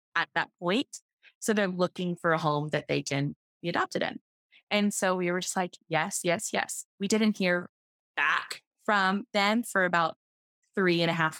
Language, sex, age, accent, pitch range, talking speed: English, female, 20-39, American, 170-215 Hz, 190 wpm